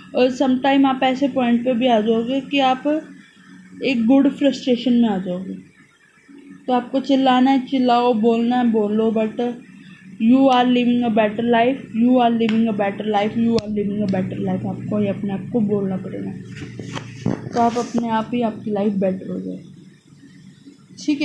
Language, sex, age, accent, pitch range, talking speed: Hindi, female, 20-39, native, 215-265 Hz, 180 wpm